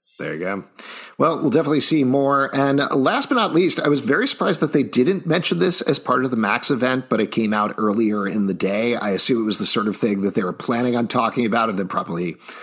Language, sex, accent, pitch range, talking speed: English, male, American, 105-145 Hz, 255 wpm